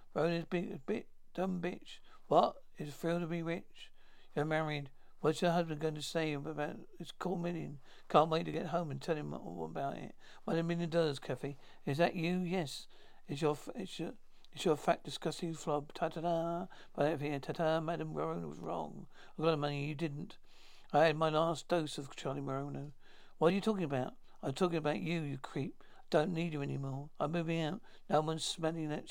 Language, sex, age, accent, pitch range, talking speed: English, male, 60-79, British, 145-170 Hz, 210 wpm